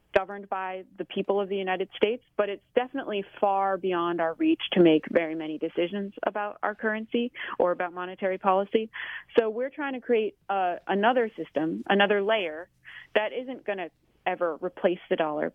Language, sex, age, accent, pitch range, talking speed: English, female, 30-49, American, 165-210 Hz, 175 wpm